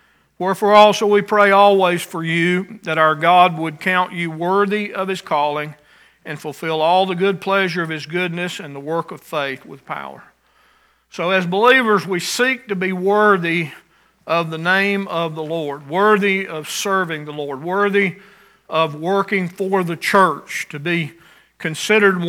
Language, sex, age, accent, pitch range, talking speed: English, male, 50-69, American, 155-190 Hz, 165 wpm